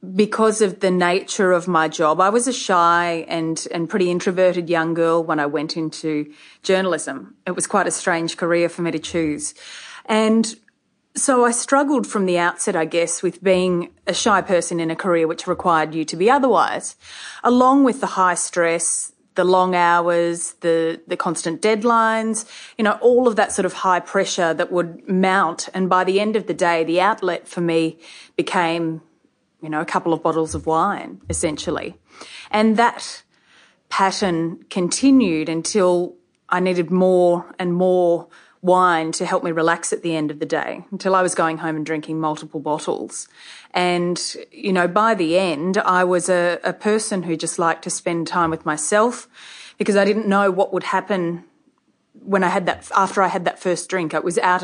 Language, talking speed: English, 185 wpm